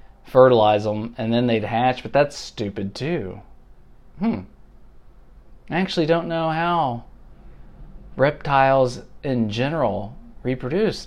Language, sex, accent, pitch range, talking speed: English, male, American, 110-165 Hz, 110 wpm